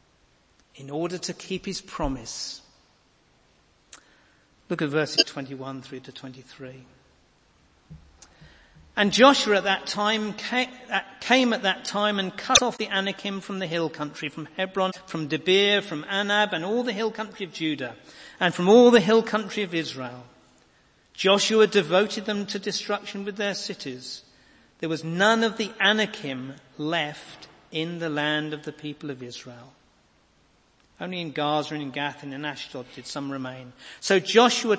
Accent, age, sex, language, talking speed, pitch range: British, 50-69, male, English, 155 wpm, 135-205 Hz